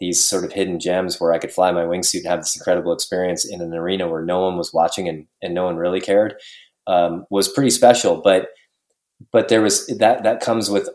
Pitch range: 90-115 Hz